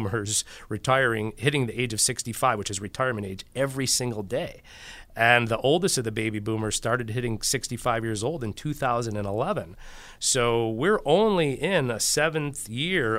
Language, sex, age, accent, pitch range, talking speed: English, male, 40-59, American, 105-125 Hz, 155 wpm